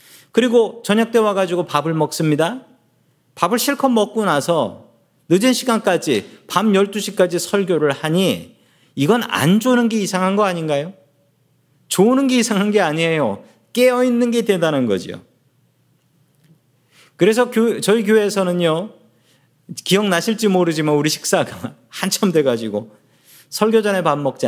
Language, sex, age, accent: Korean, male, 40-59, native